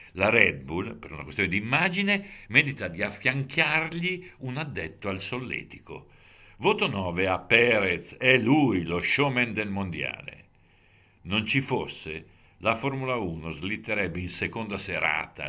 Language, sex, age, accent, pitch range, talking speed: Italian, male, 60-79, native, 85-120 Hz, 135 wpm